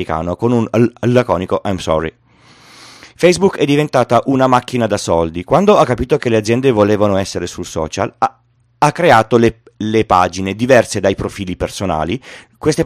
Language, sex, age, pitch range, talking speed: Italian, male, 30-49, 100-130 Hz, 165 wpm